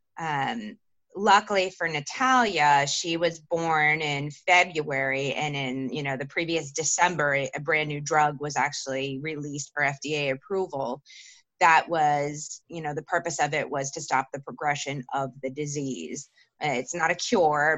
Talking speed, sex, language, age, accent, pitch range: 160 wpm, female, English, 20-39, American, 145-170 Hz